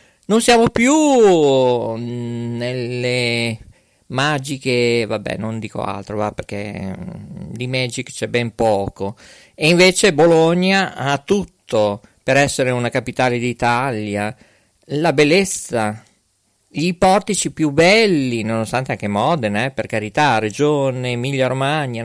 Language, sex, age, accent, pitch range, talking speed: Italian, male, 40-59, native, 120-175 Hz, 110 wpm